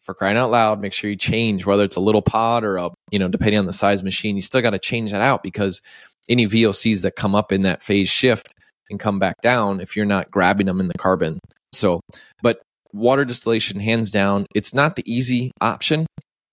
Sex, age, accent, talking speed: male, 20-39, American, 220 wpm